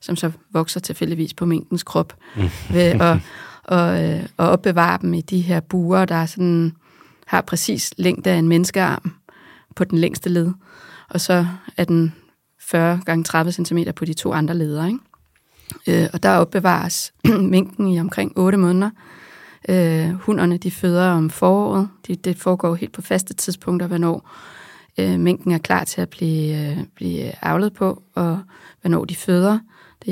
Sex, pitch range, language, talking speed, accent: female, 165-185 Hz, Danish, 145 wpm, native